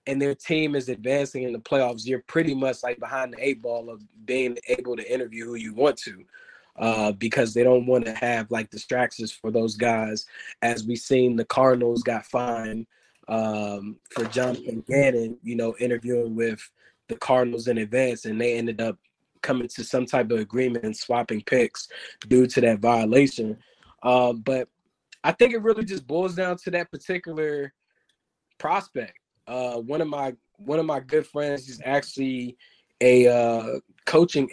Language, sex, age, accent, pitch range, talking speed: English, male, 20-39, American, 120-140 Hz, 175 wpm